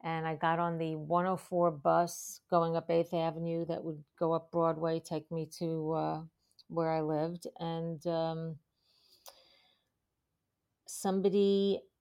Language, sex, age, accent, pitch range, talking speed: English, female, 50-69, American, 160-200 Hz, 130 wpm